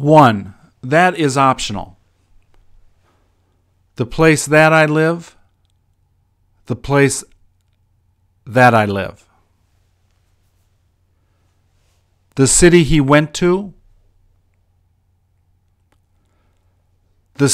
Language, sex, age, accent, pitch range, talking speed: English, male, 50-69, American, 90-120 Hz, 70 wpm